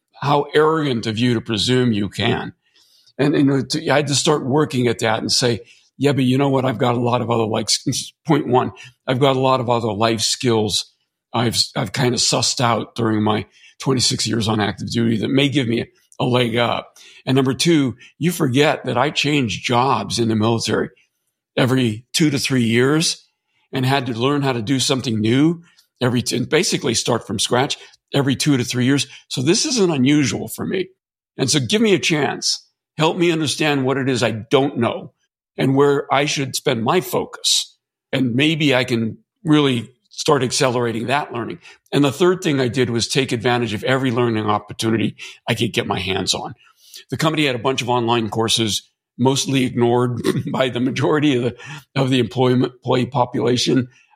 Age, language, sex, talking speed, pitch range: 50-69, English, male, 195 wpm, 120-140 Hz